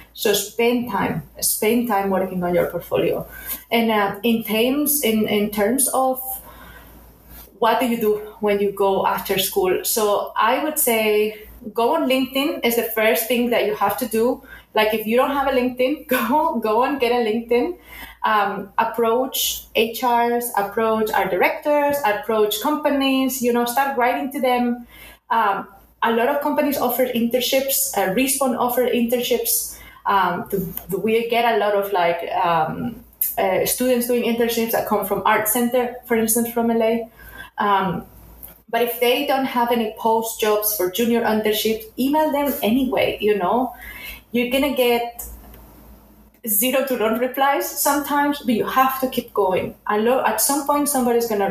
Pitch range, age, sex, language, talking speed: 215-255 Hz, 30-49, female, English, 160 wpm